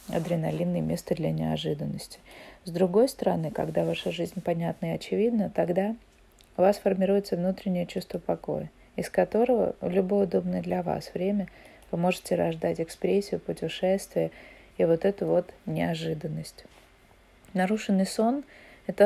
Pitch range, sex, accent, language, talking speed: 175-200 Hz, female, native, Russian, 130 wpm